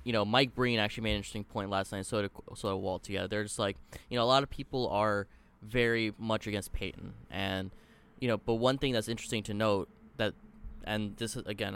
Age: 20-39